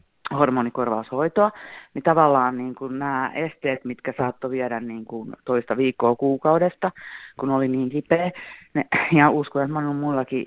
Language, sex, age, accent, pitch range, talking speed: Finnish, female, 30-49, native, 130-155 Hz, 145 wpm